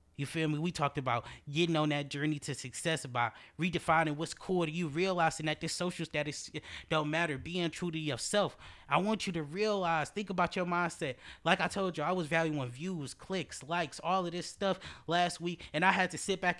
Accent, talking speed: American, 215 wpm